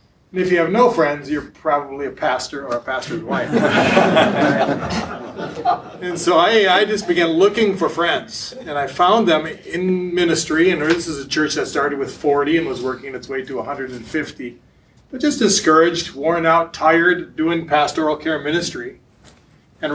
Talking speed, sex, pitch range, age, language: 170 wpm, male, 150-180 Hz, 30-49, English